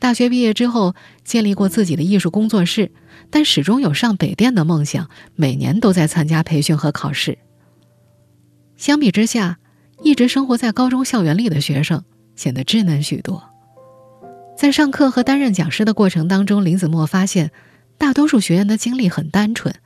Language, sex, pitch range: Chinese, female, 150-220 Hz